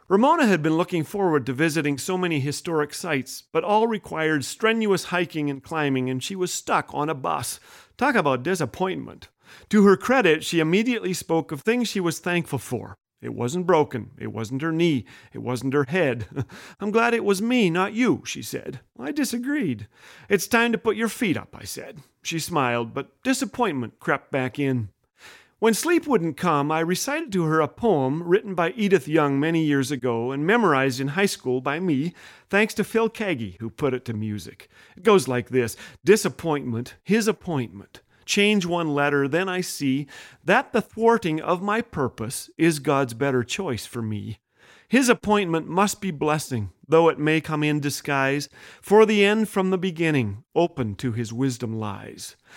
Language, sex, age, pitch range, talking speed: English, male, 40-59, 135-195 Hz, 180 wpm